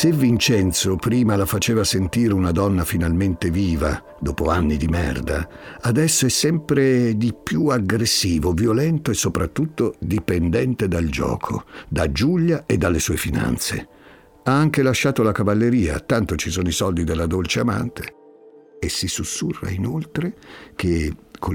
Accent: native